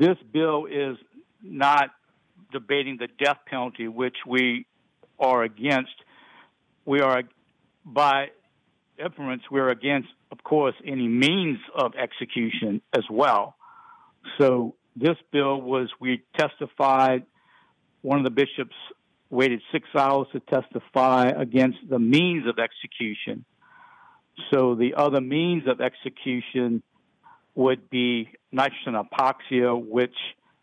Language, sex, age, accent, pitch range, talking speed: English, male, 60-79, American, 120-140 Hz, 110 wpm